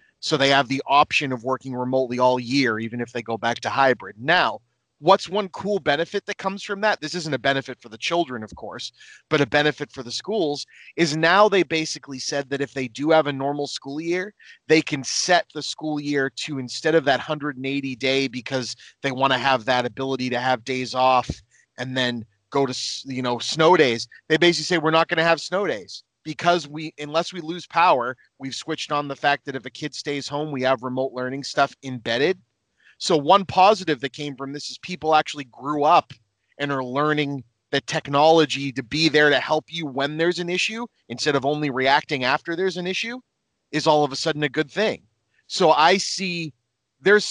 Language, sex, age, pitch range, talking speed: English, male, 30-49, 130-165 Hz, 210 wpm